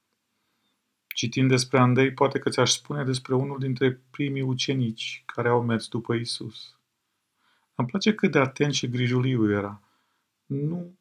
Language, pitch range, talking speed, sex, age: Romanian, 115-135 Hz, 145 wpm, male, 40-59